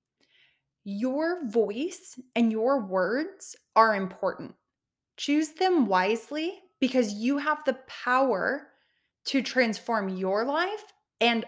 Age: 20-39